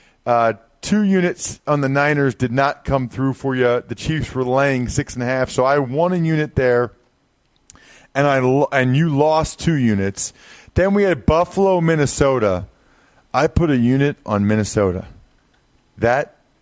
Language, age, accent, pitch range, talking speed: English, 40-59, American, 110-140 Hz, 165 wpm